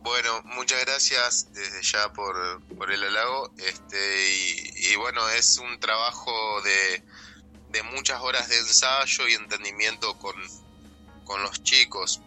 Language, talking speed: Spanish, 130 wpm